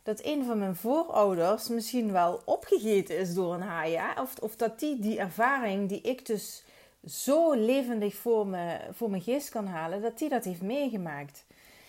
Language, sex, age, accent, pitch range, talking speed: Dutch, female, 30-49, Dutch, 185-240 Hz, 170 wpm